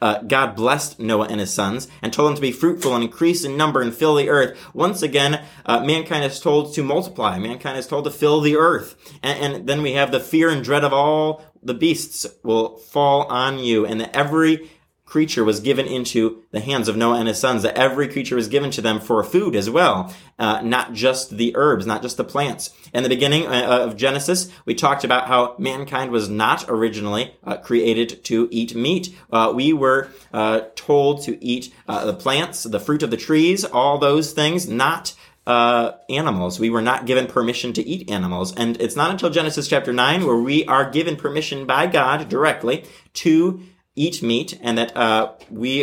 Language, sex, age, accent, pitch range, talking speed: English, male, 30-49, American, 115-150 Hz, 205 wpm